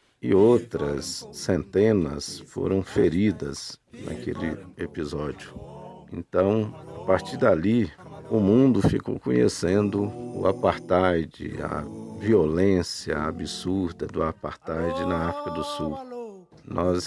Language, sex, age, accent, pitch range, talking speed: Portuguese, male, 50-69, Brazilian, 80-105 Hz, 95 wpm